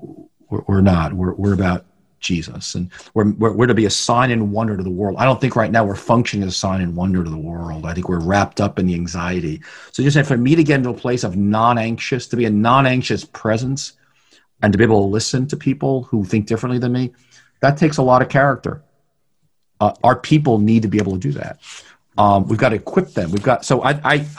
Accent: American